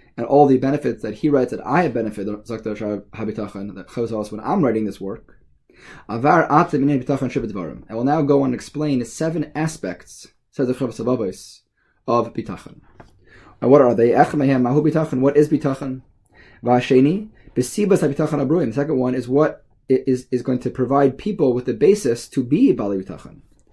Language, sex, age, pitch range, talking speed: English, male, 20-39, 120-145 Hz, 160 wpm